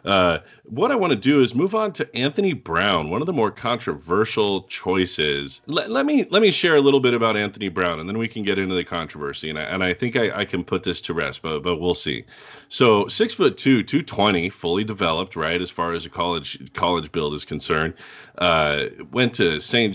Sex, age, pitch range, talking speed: male, 40-59, 90-125 Hz, 225 wpm